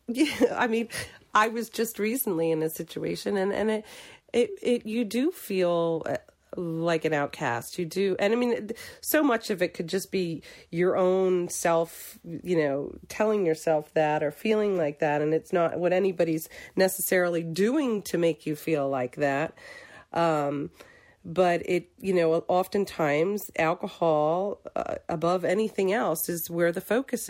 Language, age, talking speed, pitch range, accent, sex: English, 40-59, 160 wpm, 160-205 Hz, American, female